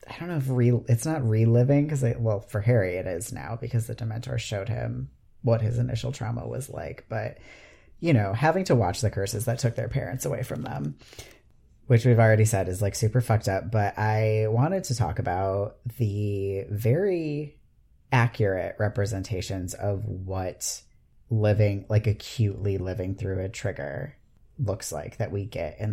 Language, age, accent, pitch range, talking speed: English, 30-49, American, 100-120 Hz, 170 wpm